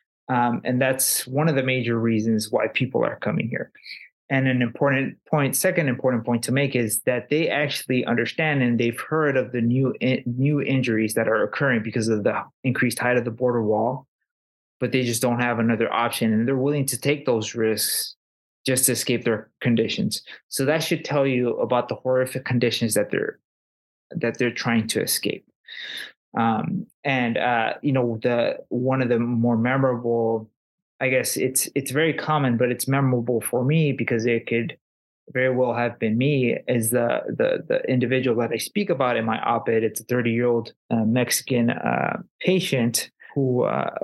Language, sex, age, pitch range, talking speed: English, male, 20-39, 115-130 Hz, 185 wpm